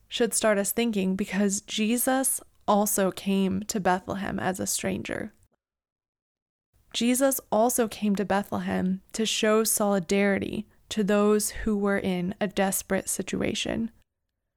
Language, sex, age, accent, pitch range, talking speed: English, female, 20-39, American, 190-220 Hz, 120 wpm